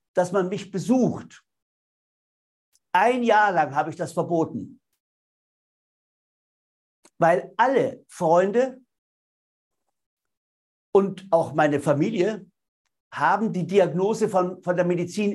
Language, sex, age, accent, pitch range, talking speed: German, male, 60-79, German, 160-200 Hz, 100 wpm